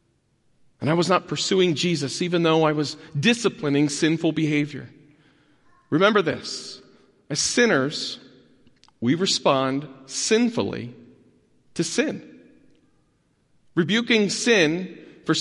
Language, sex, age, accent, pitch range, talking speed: English, male, 40-59, American, 140-185 Hz, 95 wpm